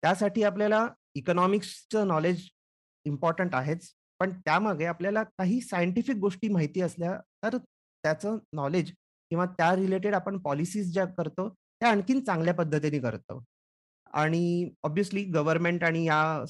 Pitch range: 150-195 Hz